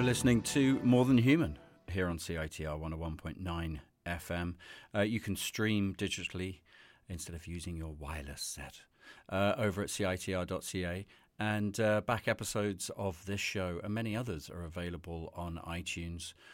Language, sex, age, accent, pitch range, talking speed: English, male, 40-59, British, 85-105 Hz, 140 wpm